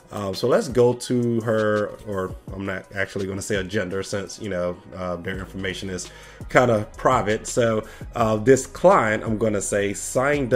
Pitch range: 105-125 Hz